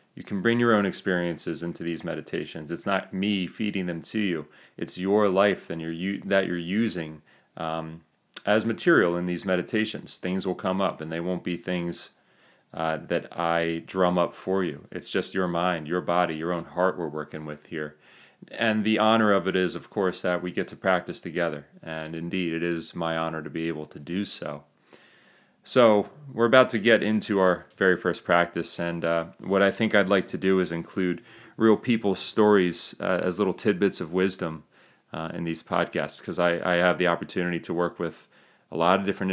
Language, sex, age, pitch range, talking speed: English, male, 30-49, 85-100 Hz, 200 wpm